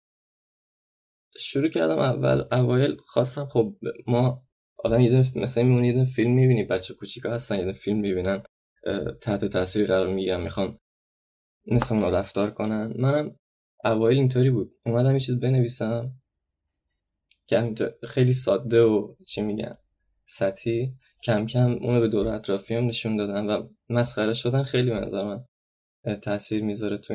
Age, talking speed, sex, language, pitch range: 20-39, 130 wpm, male, Persian, 100-120 Hz